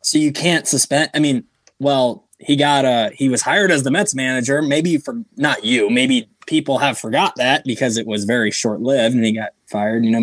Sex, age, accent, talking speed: male, 20-39, American, 225 wpm